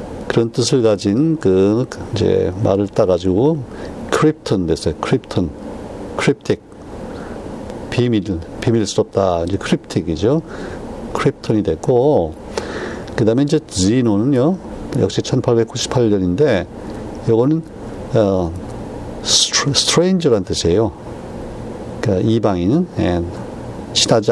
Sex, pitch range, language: male, 95-120 Hz, Korean